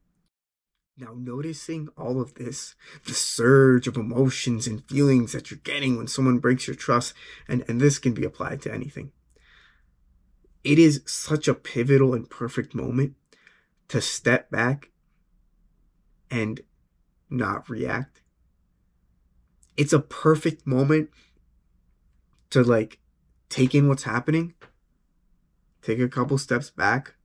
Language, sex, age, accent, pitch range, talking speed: English, male, 20-39, American, 105-140 Hz, 125 wpm